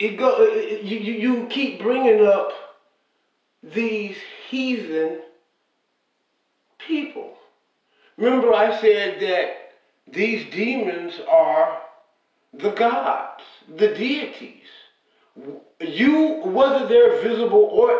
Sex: male